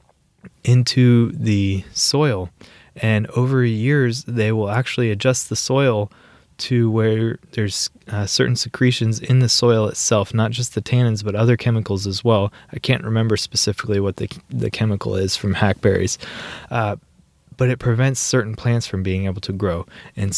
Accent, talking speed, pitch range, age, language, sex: American, 160 wpm, 100-120 Hz, 20-39, English, male